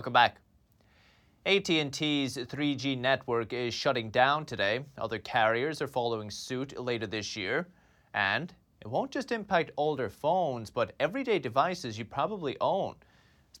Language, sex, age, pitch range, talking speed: English, male, 30-49, 115-150 Hz, 135 wpm